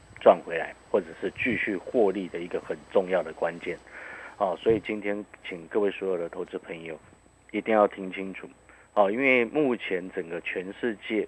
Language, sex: Chinese, male